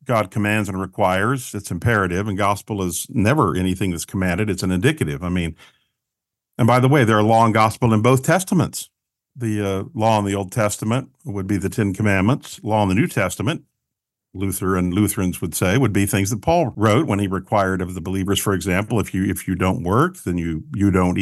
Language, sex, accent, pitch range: English, male, American, 95-120 Hz